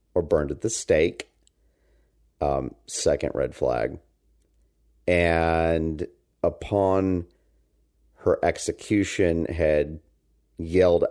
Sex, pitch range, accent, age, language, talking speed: male, 75-95 Hz, American, 40-59, English, 80 wpm